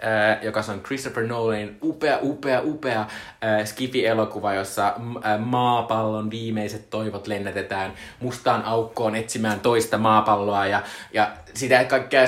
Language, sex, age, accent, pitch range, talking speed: Finnish, male, 20-39, native, 105-130 Hz, 125 wpm